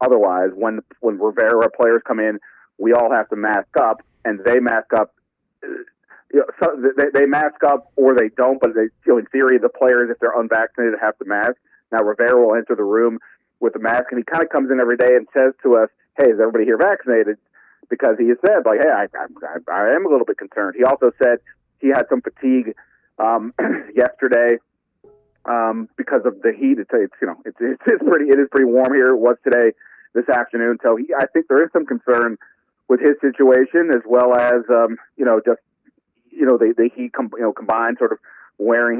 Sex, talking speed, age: male, 215 wpm, 40-59